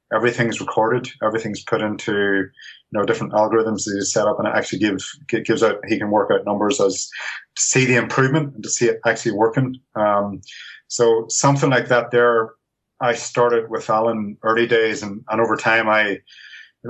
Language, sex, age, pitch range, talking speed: English, male, 30-49, 110-120 Hz, 190 wpm